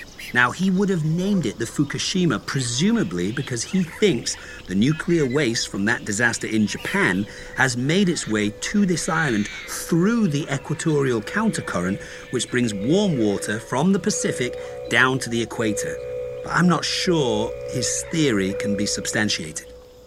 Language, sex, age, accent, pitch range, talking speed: English, male, 40-59, British, 105-160 Hz, 155 wpm